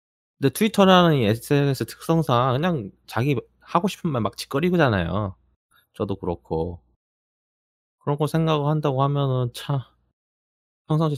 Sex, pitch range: male, 90-135 Hz